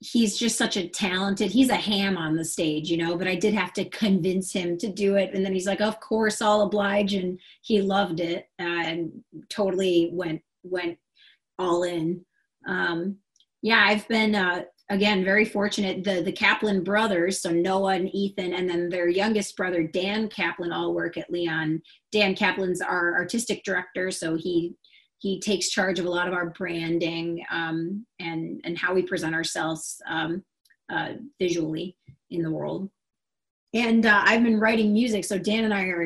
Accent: American